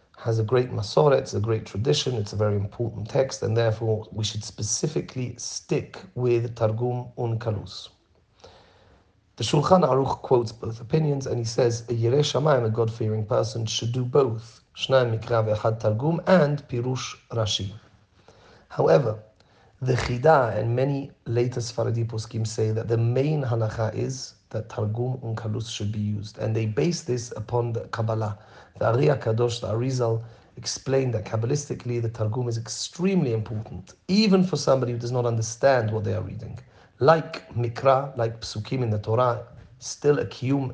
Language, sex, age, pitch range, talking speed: English, male, 40-59, 110-125 Hz, 160 wpm